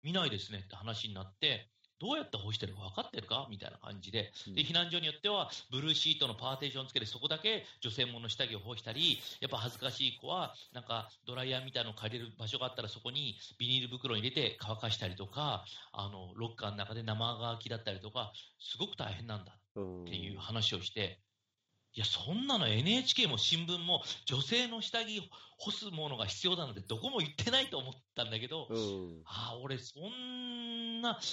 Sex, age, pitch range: male, 40-59, 105-150 Hz